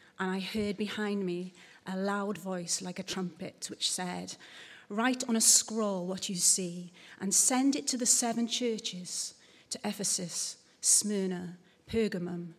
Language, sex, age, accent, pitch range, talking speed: English, female, 30-49, British, 185-225 Hz, 150 wpm